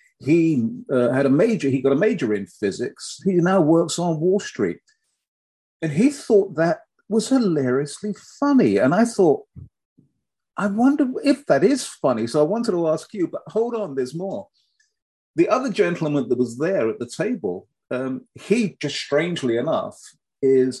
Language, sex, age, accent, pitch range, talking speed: English, male, 40-59, British, 140-225 Hz, 170 wpm